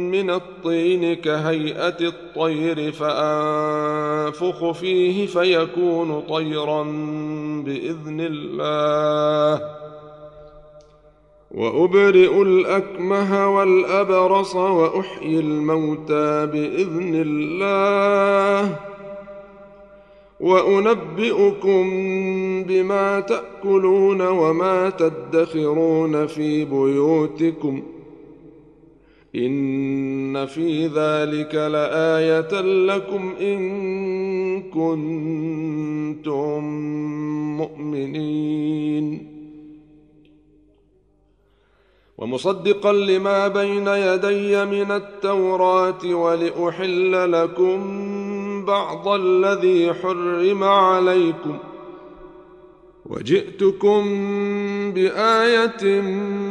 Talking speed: 50 wpm